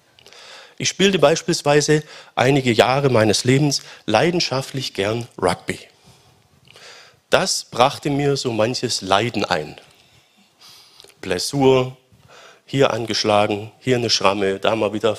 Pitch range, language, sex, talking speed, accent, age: 110-140 Hz, German, male, 105 wpm, German, 50-69